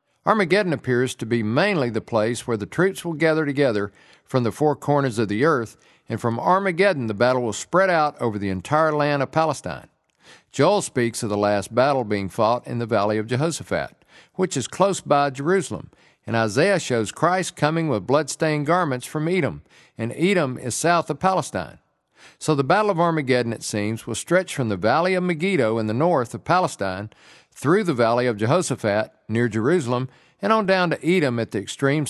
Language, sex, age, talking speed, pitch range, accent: English, male, 50-69, 190 wpm, 115-165 Hz, American